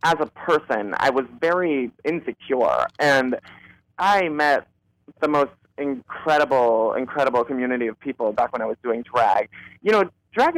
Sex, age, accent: male, 30-49, American